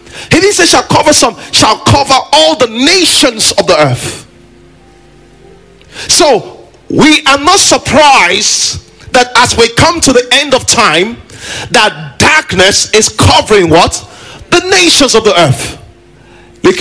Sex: male